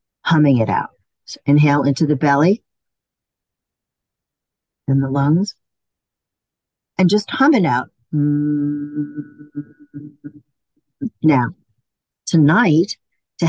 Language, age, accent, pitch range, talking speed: English, 50-69, American, 145-180 Hz, 85 wpm